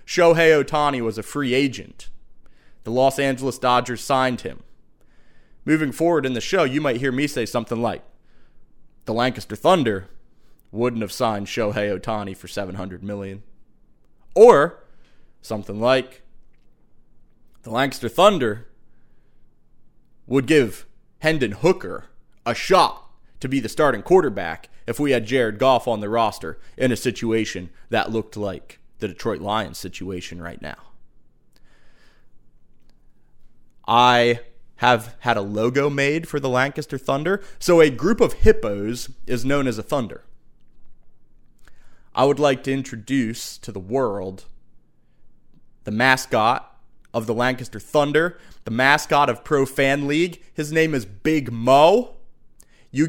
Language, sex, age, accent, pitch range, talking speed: English, male, 30-49, American, 110-145 Hz, 135 wpm